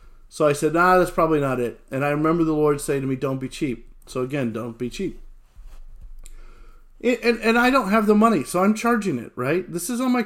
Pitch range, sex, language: 130-180 Hz, male, English